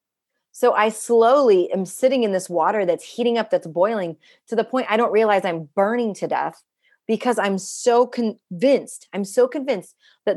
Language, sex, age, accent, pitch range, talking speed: English, female, 30-49, American, 180-245 Hz, 185 wpm